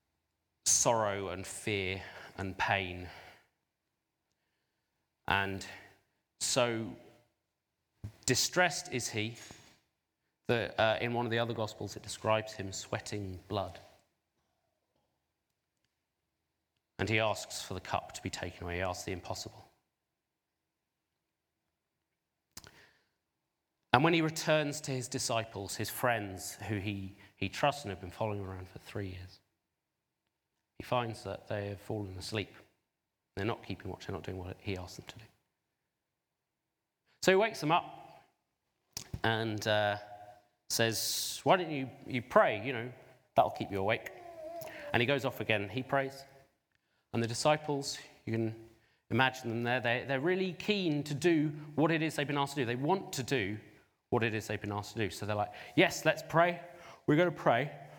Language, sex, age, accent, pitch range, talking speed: English, male, 30-49, British, 100-135 Hz, 150 wpm